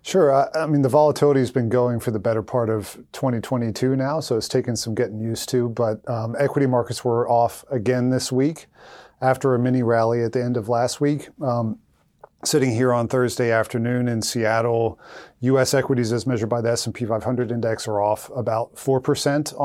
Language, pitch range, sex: English, 110-130 Hz, male